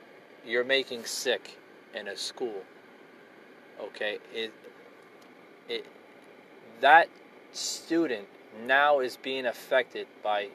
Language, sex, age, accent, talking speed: English, male, 30-49, American, 90 wpm